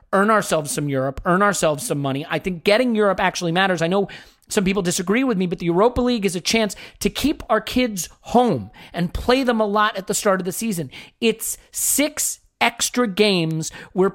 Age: 40-59